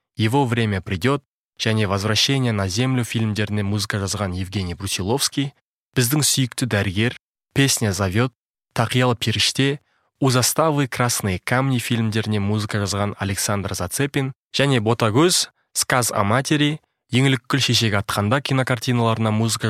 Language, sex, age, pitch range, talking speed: Russian, male, 20-39, 105-135 Hz, 115 wpm